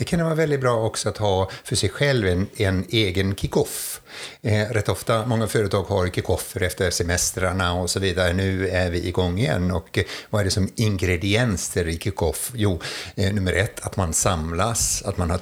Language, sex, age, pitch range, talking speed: Swedish, male, 60-79, 90-110 Hz, 200 wpm